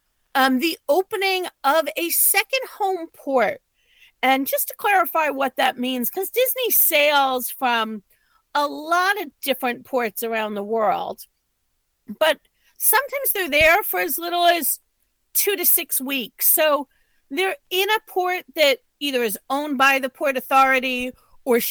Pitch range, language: 235-315 Hz, English